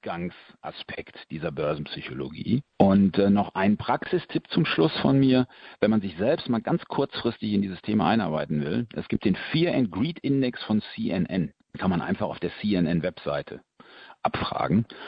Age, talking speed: 50-69, 165 wpm